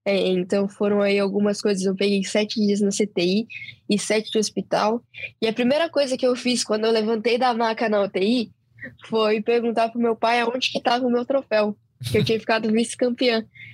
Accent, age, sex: Brazilian, 10-29, female